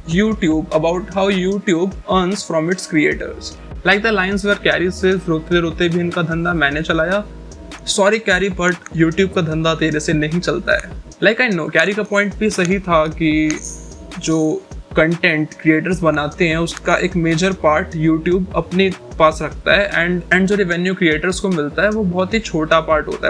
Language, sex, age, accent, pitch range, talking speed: Hindi, male, 20-39, native, 155-190 Hz, 155 wpm